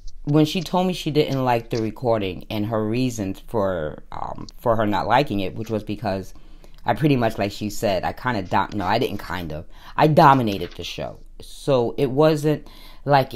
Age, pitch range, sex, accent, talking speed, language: 30-49, 110-145 Hz, female, American, 200 wpm, English